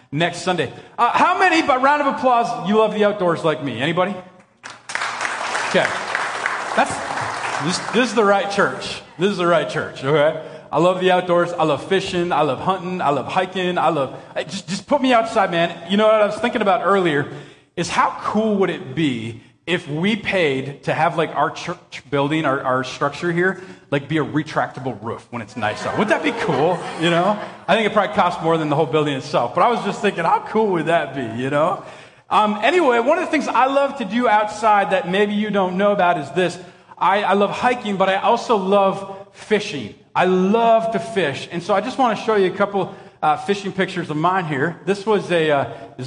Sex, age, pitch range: male, 30-49, 160-210 Hz